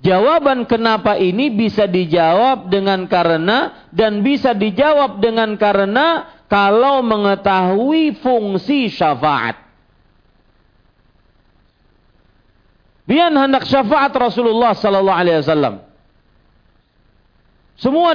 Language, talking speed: Malay, 80 wpm